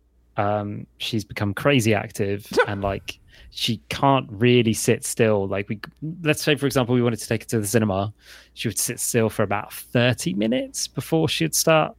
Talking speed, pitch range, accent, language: 185 wpm, 100-125 Hz, British, English